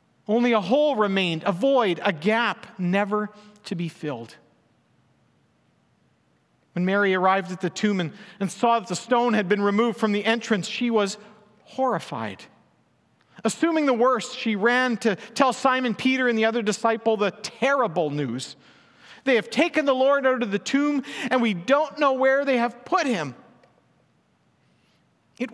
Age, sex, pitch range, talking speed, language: 50-69, male, 180-235 Hz, 160 wpm, English